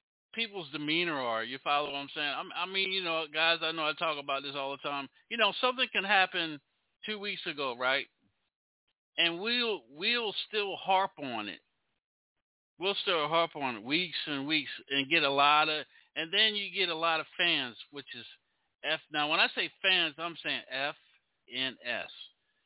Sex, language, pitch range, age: male, English, 140-190 Hz, 50-69